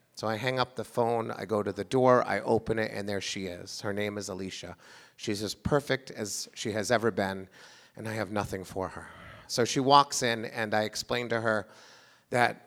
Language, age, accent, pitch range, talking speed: English, 30-49, American, 110-140 Hz, 220 wpm